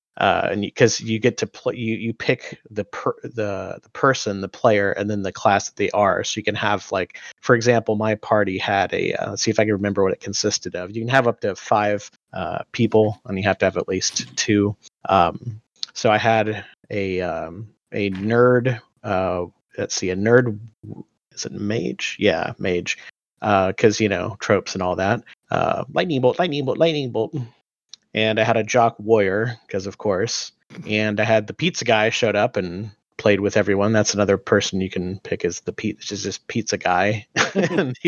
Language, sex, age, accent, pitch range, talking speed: English, male, 30-49, American, 100-115 Hz, 210 wpm